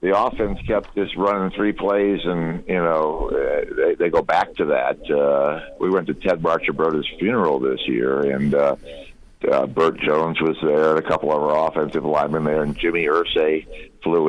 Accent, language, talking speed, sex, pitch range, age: American, English, 185 wpm, male, 75-115 Hz, 50-69